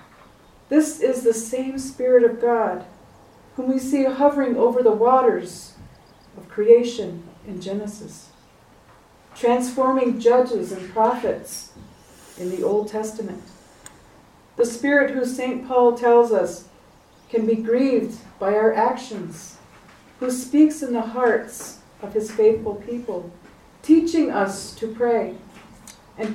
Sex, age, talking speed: female, 40-59, 120 wpm